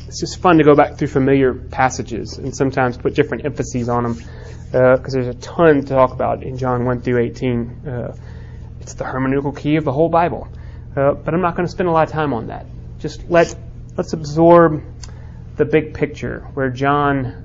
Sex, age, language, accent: male, 30-49, English, American